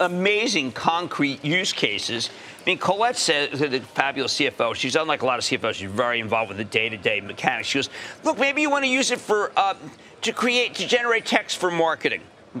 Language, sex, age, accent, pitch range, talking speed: English, male, 50-69, American, 150-230 Hz, 200 wpm